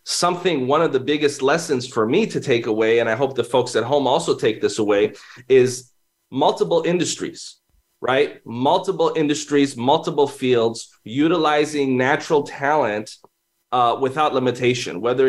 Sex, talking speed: male, 145 wpm